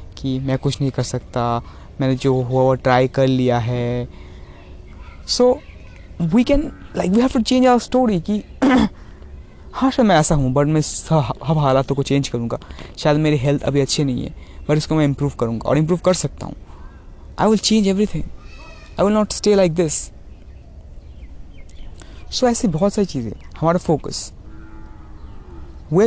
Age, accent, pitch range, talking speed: 20-39, native, 115-185 Hz, 180 wpm